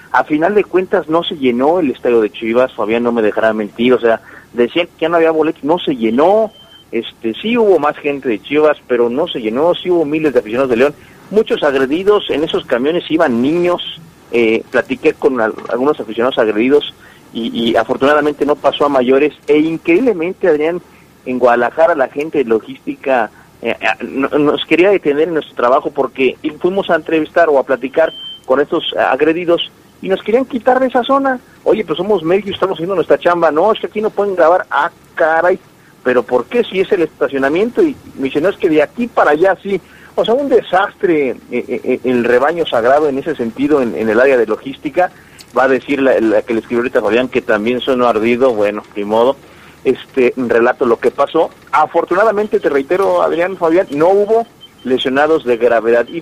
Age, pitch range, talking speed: 40-59, 130-190 Hz, 200 wpm